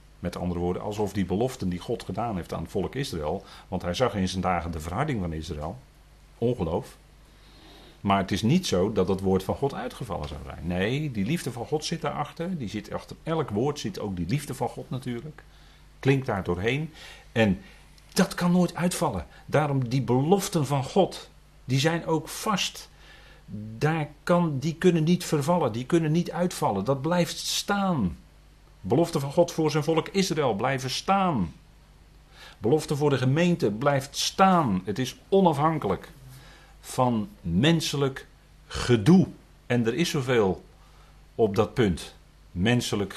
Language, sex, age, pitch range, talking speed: Dutch, male, 40-59, 95-160 Hz, 160 wpm